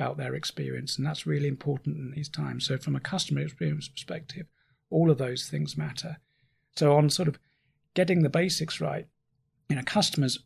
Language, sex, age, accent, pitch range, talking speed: English, male, 30-49, British, 130-150 Hz, 180 wpm